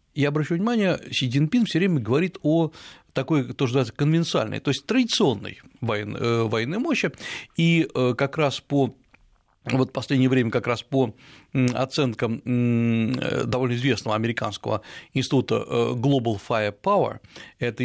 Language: Russian